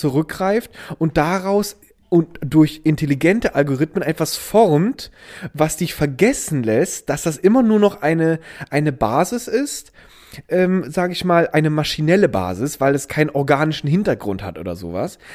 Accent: German